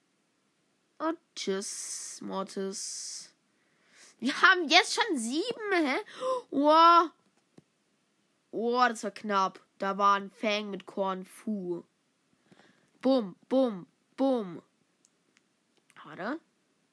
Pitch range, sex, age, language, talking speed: 215-330 Hz, female, 20-39, German, 90 wpm